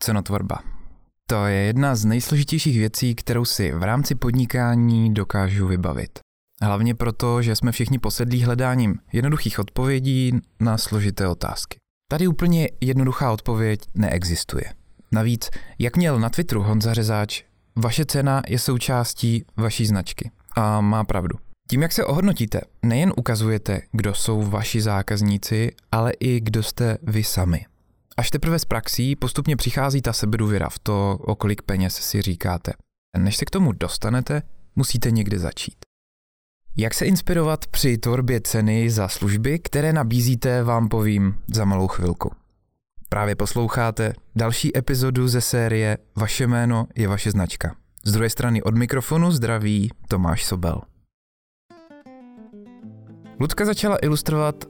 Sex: male